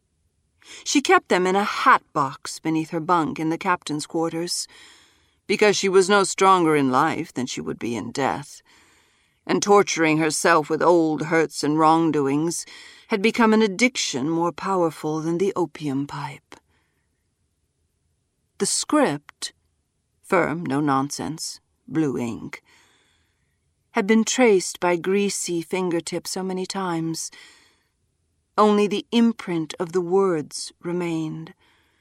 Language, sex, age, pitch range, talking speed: English, female, 50-69, 140-185 Hz, 125 wpm